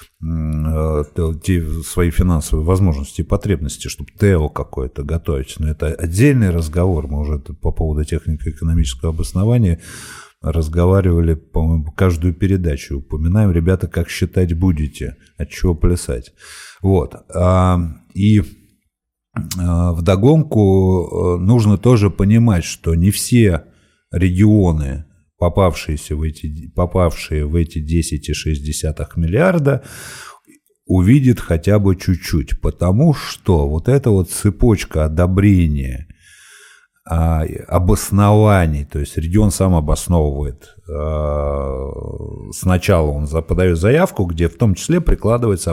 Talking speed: 95 wpm